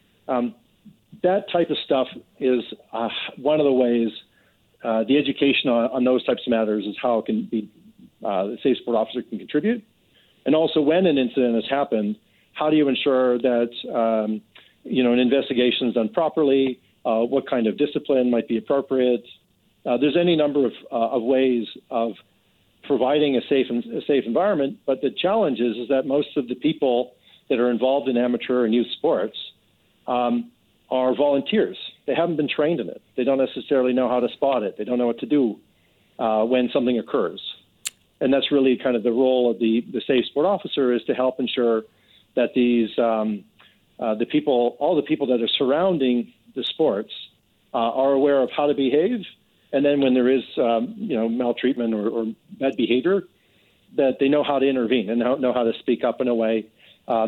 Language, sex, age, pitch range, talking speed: English, male, 50-69, 115-135 Hz, 195 wpm